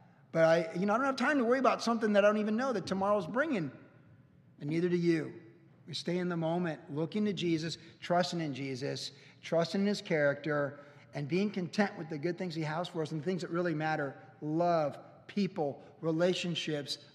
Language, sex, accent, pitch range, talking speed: English, male, American, 140-175 Hz, 205 wpm